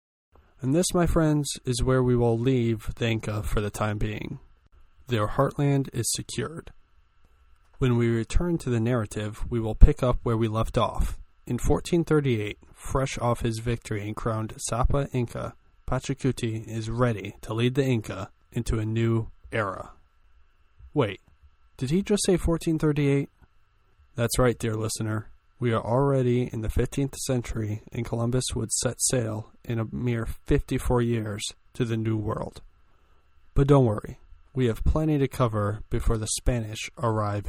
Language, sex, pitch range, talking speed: English, male, 105-125 Hz, 155 wpm